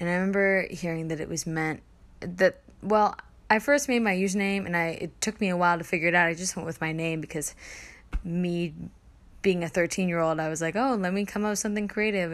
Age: 20-39